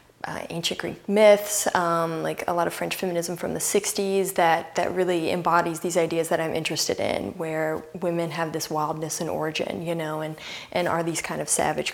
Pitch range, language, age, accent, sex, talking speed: 165-195 Hz, English, 20-39, American, female, 200 wpm